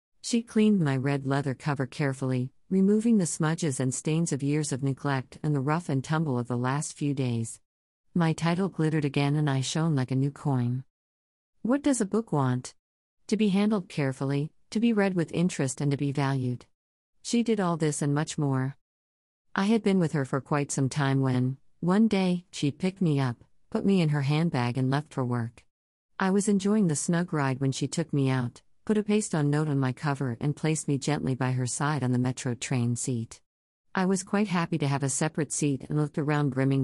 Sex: female